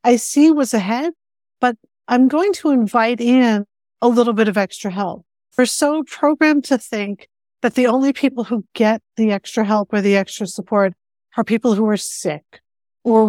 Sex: female